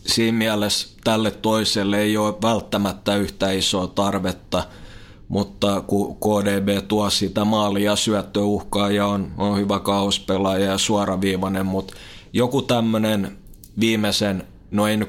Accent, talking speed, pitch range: native, 115 wpm, 100-105 Hz